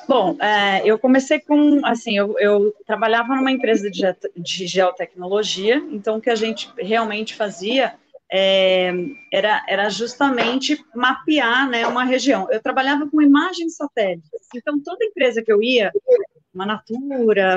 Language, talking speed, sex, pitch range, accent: Portuguese, 135 wpm, female, 210-280 Hz, Brazilian